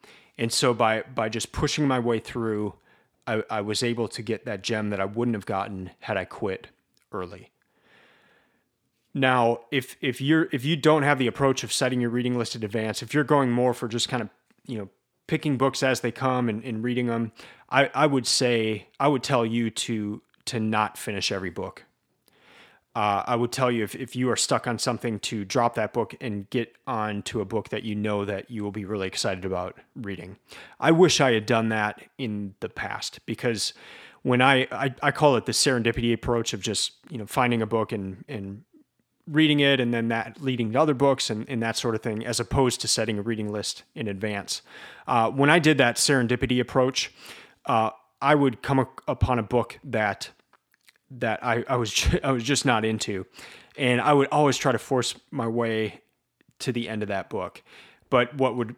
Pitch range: 110-130 Hz